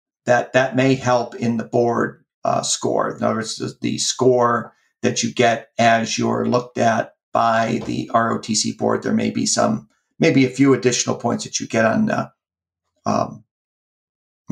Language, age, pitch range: English, 40-59, 115-130 Hz